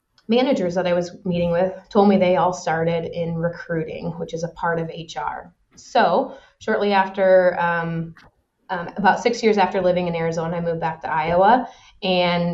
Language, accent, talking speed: English, American, 175 wpm